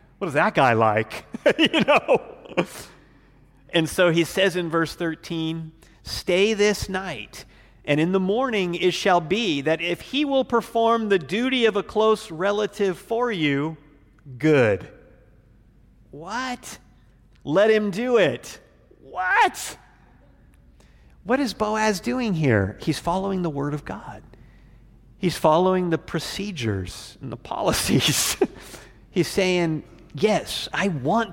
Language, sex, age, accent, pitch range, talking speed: English, male, 40-59, American, 125-185 Hz, 130 wpm